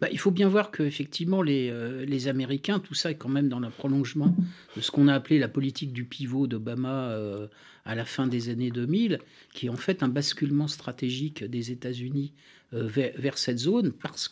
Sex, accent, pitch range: male, French, 130-180 Hz